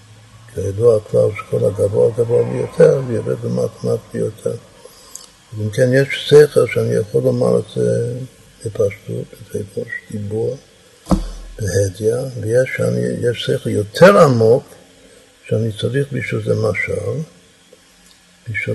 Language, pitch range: Hebrew, 105-165 Hz